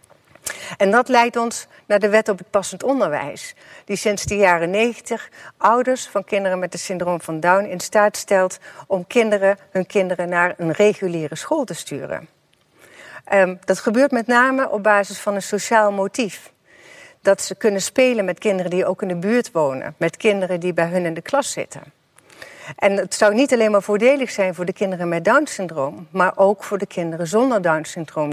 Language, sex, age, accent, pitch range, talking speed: Dutch, female, 60-79, Dutch, 170-215 Hz, 185 wpm